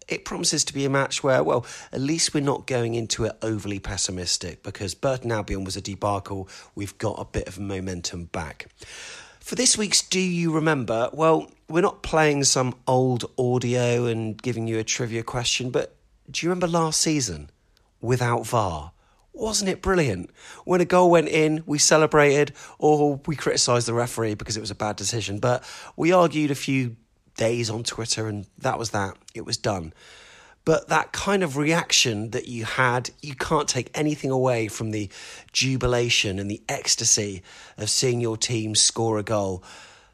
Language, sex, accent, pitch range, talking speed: English, male, British, 105-145 Hz, 180 wpm